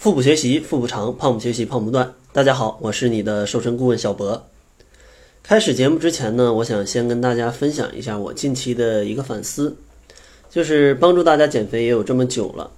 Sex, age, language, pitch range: male, 20-39, Chinese, 105-130 Hz